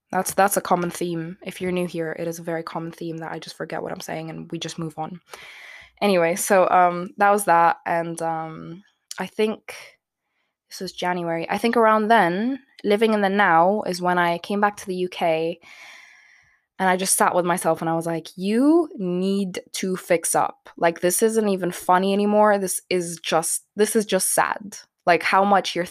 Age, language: 20-39, English